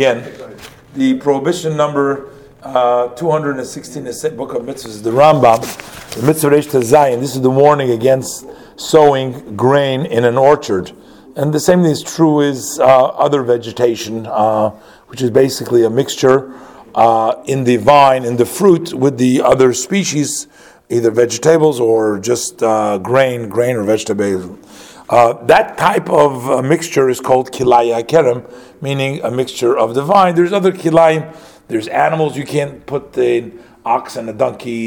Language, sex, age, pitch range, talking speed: English, male, 50-69, 125-165 Hz, 160 wpm